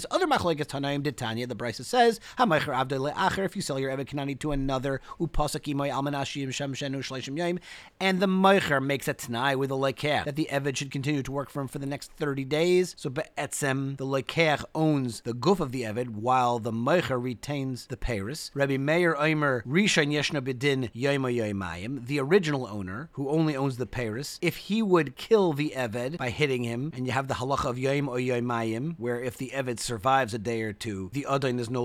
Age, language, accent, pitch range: 30-49, English, American, 125-155 Hz